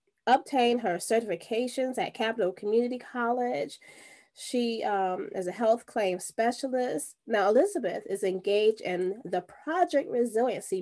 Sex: female